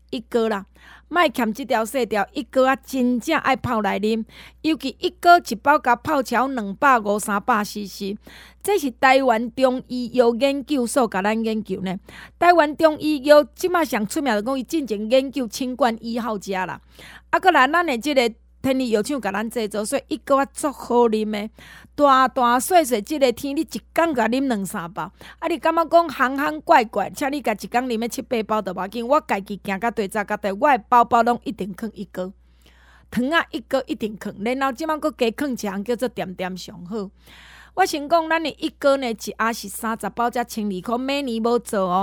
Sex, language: female, Chinese